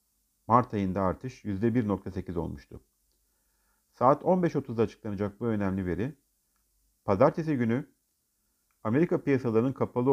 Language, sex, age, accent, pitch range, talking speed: Turkish, male, 50-69, native, 95-130 Hz, 95 wpm